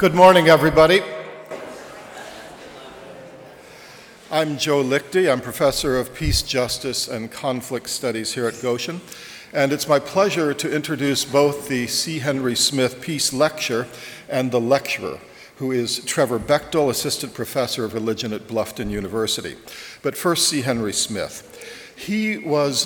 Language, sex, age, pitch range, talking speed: English, male, 50-69, 120-150 Hz, 135 wpm